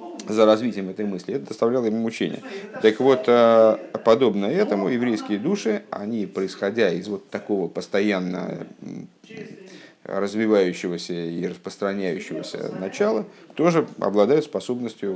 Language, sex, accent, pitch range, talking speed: Russian, male, native, 100-135 Hz, 105 wpm